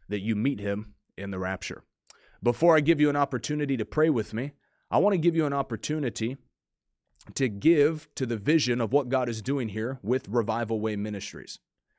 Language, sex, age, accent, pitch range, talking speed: English, male, 30-49, American, 110-145 Hz, 195 wpm